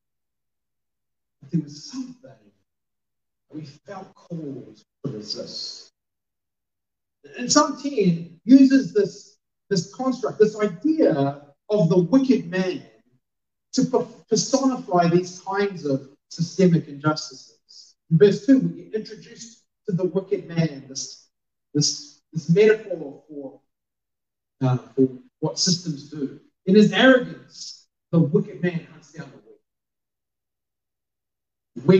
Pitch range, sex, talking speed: 140-195 Hz, male, 105 wpm